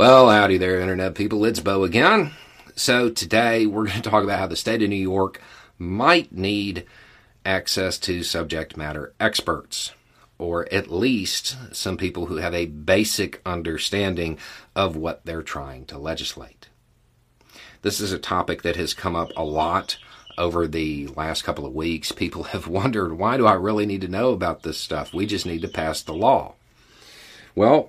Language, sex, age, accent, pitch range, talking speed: English, male, 40-59, American, 85-110 Hz, 175 wpm